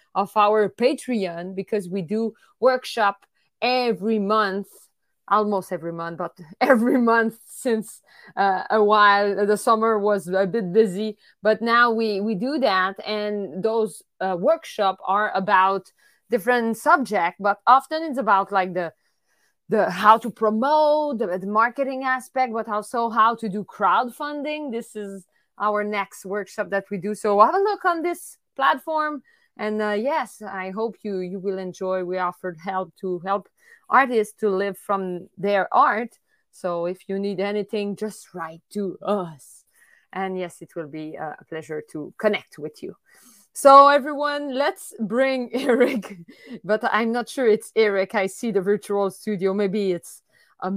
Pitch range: 190-235 Hz